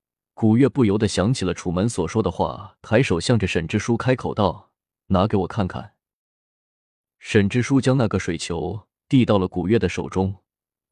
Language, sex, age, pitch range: Chinese, male, 20-39, 90-115 Hz